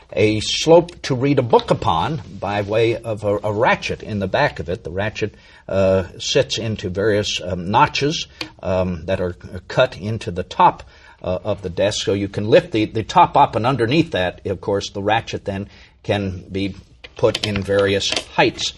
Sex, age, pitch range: male, 60-79, 85-110 Hz